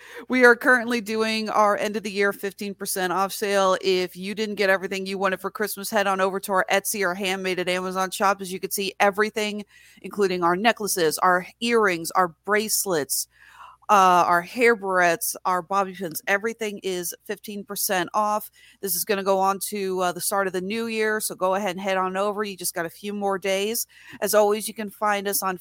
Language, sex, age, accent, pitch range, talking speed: English, female, 40-59, American, 180-210 Hz, 210 wpm